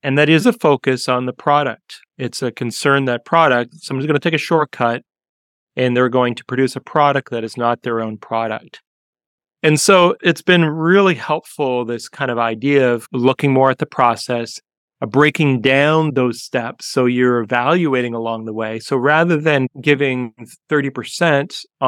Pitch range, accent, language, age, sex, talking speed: 120-140 Hz, American, English, 30-49, male, 175 wpm